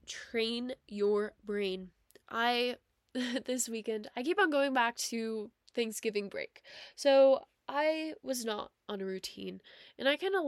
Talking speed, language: 145 wpm, English